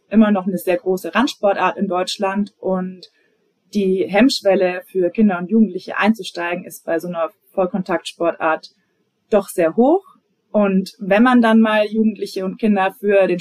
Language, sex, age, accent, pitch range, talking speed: German, female, 20-39, German, 185-215 Hz, 150 wpm